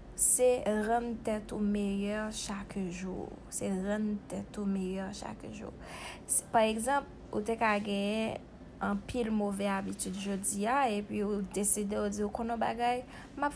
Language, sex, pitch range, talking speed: French, female, 200-230 Hz, 135 wpm